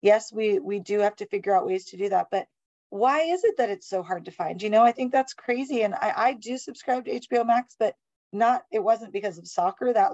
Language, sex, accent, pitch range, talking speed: English, female, American, 190-230 Hz, 260 wpm